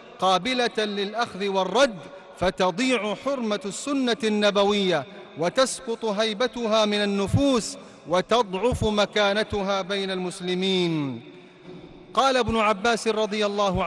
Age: 40-59